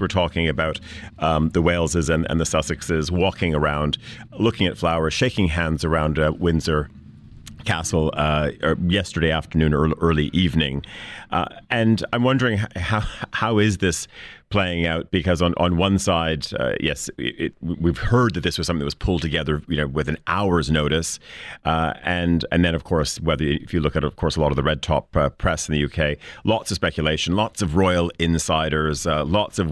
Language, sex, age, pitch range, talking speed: English, male, 40-59, 80-95 Hz, 195 wpm